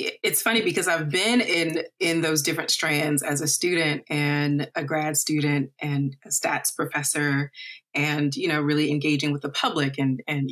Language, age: English, 30-49